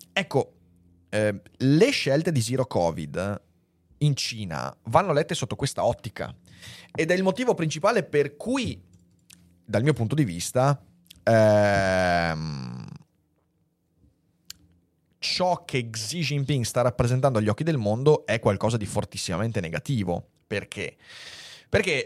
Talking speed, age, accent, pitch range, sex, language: 120 wpm, 30-49, native, 95-130 Hz, male, Italian